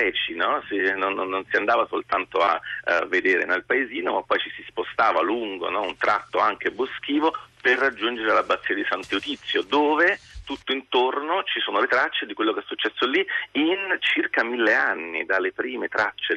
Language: Italian